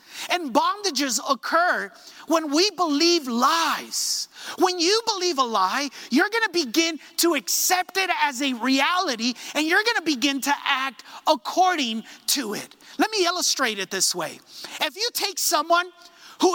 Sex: male